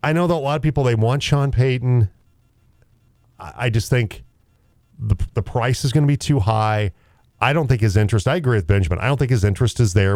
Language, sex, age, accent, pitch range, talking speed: English, male, 40-59, American, 105-130 Hz, 230 wpm